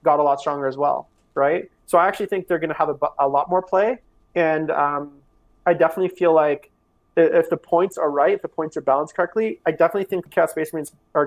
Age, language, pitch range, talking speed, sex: 30-49, English, 140-165 Hz, 240 wpm, male